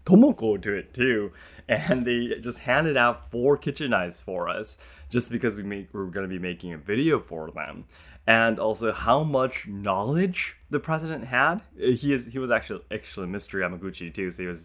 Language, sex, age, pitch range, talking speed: English, male, 20-39, 90-125 Hz, 195 wpm